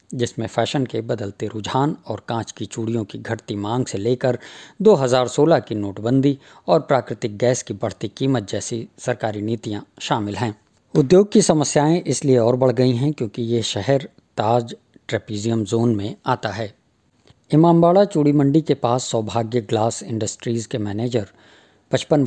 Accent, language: Indian, English